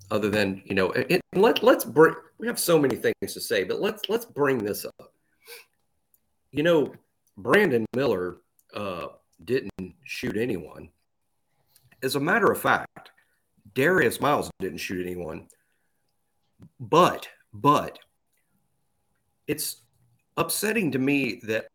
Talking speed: 125 wpm